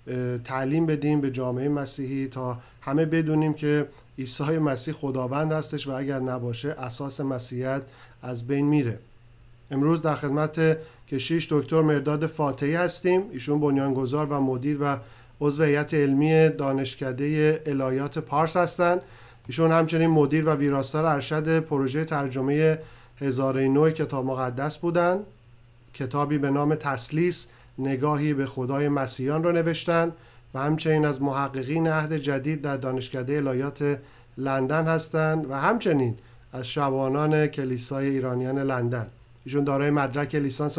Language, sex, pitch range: Persian, male, 130-155 Hz